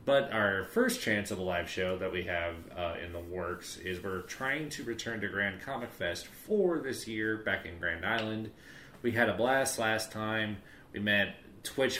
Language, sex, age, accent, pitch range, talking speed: English, male, 30-49, American, 90-110 Hz, 200 wpm